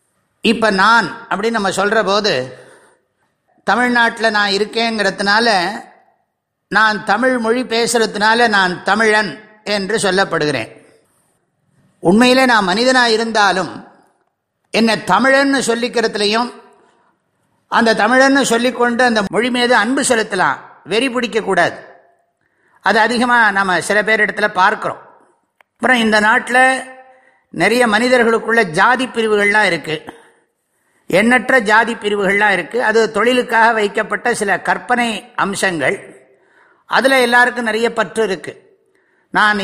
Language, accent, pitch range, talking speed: English, Indian, 195-245 Hz, 85 wpm